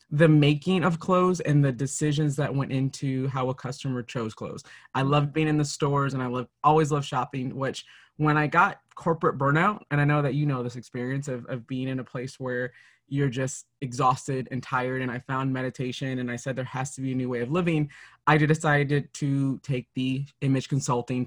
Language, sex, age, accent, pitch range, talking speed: English, male, 20-39, American, 125-150 Hz, 215 wpm